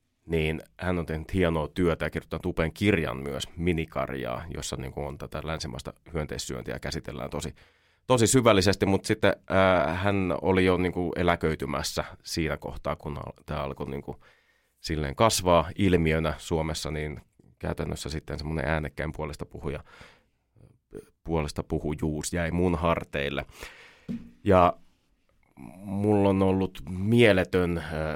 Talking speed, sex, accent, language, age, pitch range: 115 wpm, male, native, Finnish, 30-49, 75-90 Hz